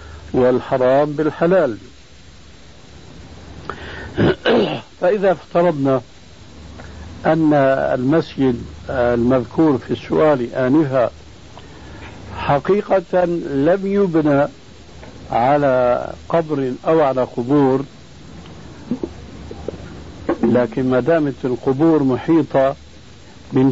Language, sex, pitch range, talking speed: Arabic, male, 100-150 Hz, 60 wpm